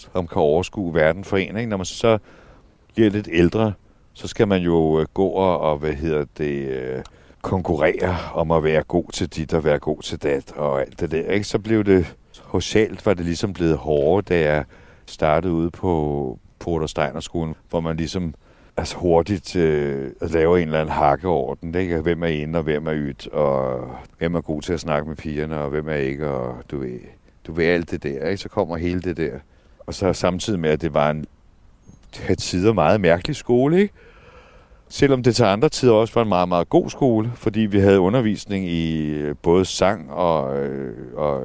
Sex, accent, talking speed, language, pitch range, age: male, native, 200 wpm, Danish, 75-95 Hz, 60-79